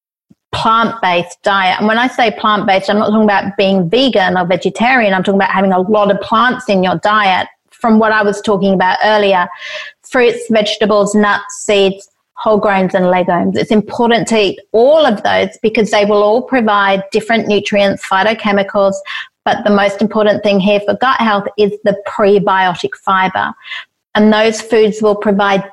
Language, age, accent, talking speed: English, 40-59, Australian, 175 wpm